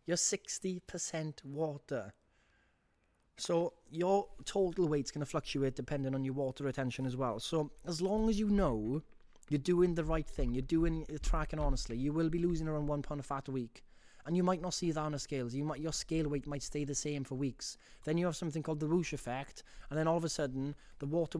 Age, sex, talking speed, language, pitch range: 20-39, male, 220 wpm, English, 125-160 Hz